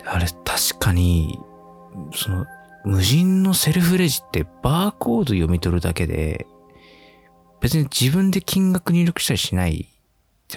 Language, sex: Japanese, male